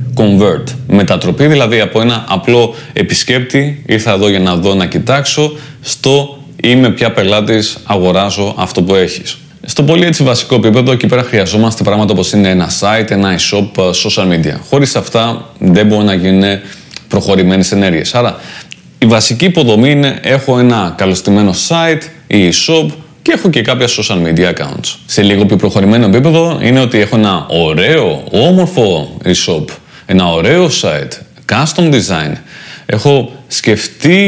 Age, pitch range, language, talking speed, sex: 30-49, 100-135 Hz, Greek, 145 wpm, male